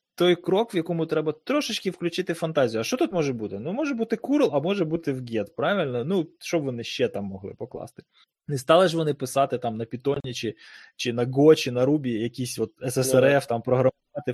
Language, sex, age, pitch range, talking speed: Ukrainian, male, 20-39, 125-175 Hz, 210 wpm